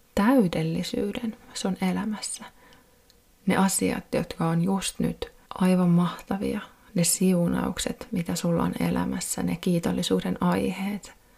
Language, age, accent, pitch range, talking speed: Finnish, 30-49, native, 175-225 Hz, 110 wpm